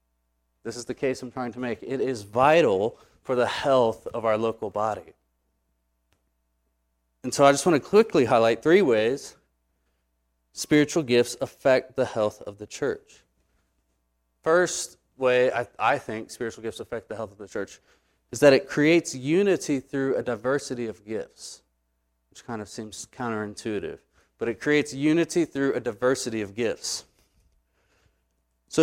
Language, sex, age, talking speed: English, male, 30-49, 155 wpm